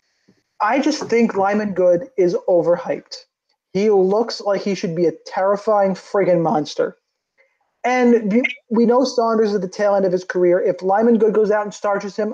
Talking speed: 175 wpm